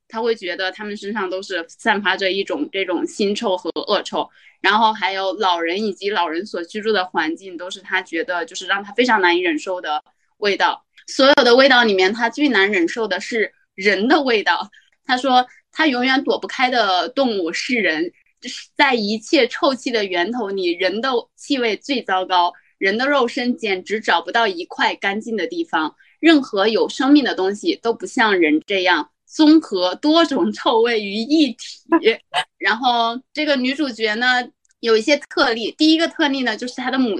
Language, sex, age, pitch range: Chinese, female, 20-39, 195-275 Hz